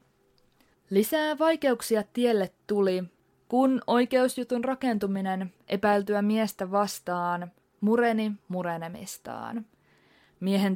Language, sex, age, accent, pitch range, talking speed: Finnish, female, 20-39, native, 195-245 Hz, 75 wpm